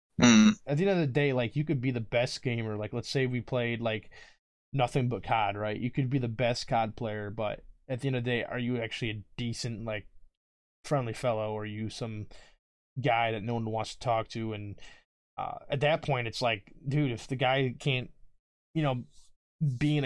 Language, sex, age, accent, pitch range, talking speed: English, male, 20-39, American, 110-130 Hz, 220 wpm